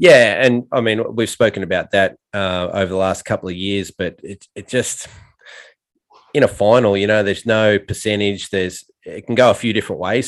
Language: English